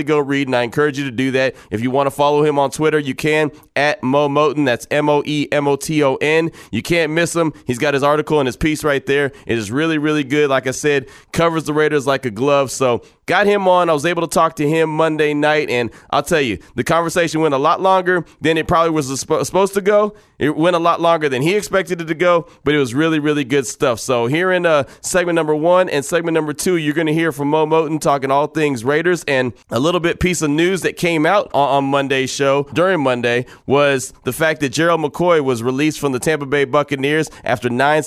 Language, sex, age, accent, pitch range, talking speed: English, male, 30-49, American, 140-160 Hz, 240 wpm